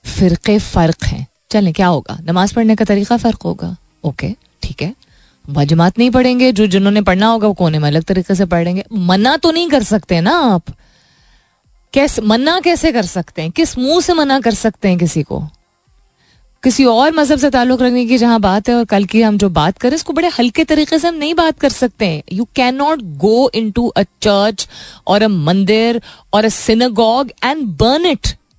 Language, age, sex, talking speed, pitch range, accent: Hindi, 20-39, female, 195 wpm, 185-255 Hz, native